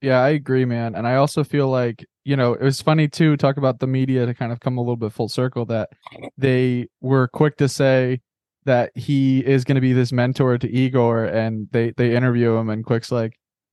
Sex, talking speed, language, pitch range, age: male, 225 wpm, English, 115-135 Hz, 20-39